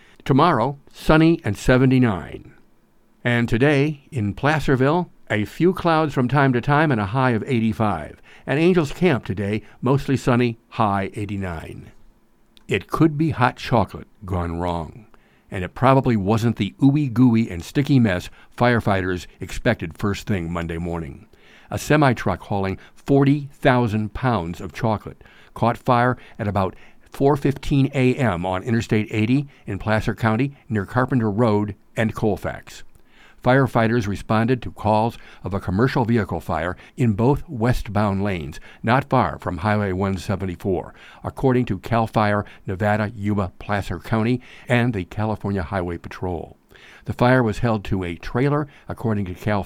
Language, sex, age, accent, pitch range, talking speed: English, male, 60-79, American, 100-130 Hz, 140 wpm